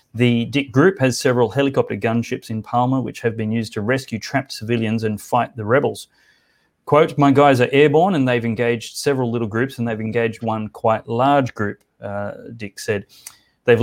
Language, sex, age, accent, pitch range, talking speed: English, male, 30-49, Australian, 110-130 Hz, 185 wpm